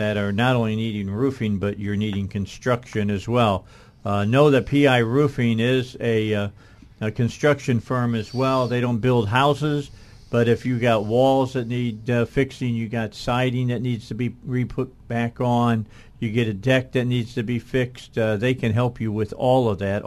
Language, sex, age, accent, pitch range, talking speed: English, male, 50-69, American, 110-130 Hz, 195 wpm